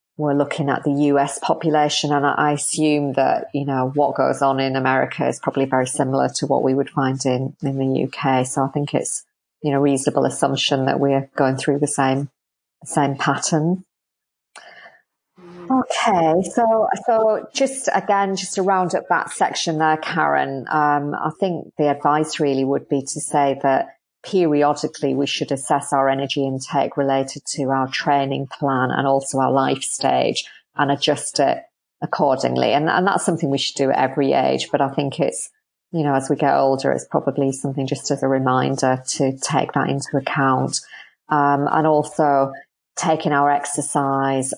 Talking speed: 175 wpm